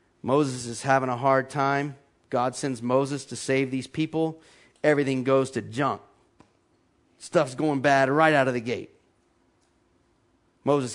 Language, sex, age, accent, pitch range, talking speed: English, male, 40-59, American, 115-155 Hz, 140 wpm